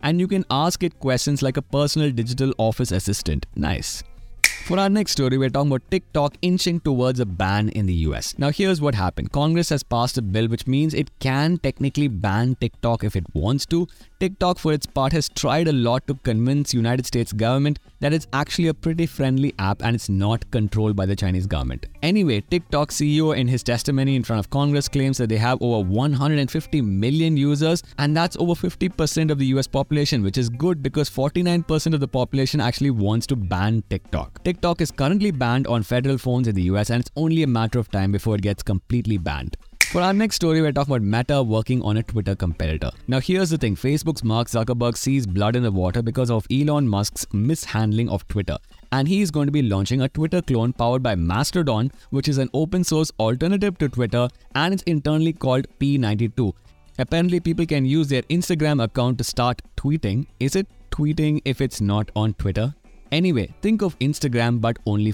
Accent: Indian